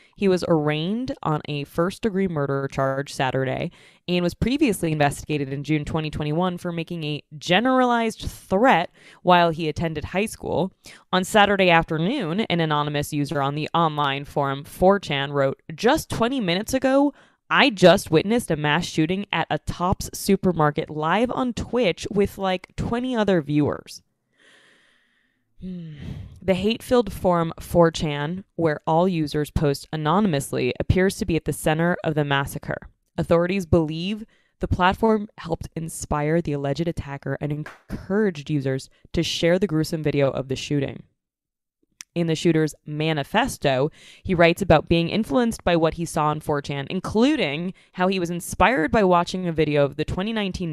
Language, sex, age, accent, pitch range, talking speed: English, female, 20-39, American, 150-190 Hz, 150 wpm